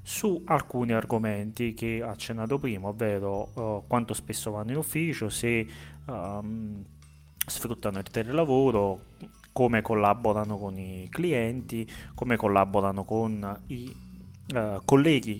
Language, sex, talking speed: Italian, male, 115 wpm